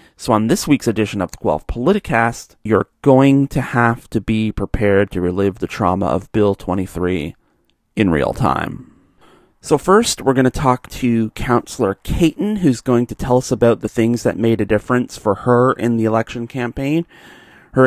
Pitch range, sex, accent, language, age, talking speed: 110-130 Hz, male, American, English, 30-49, 180 wpm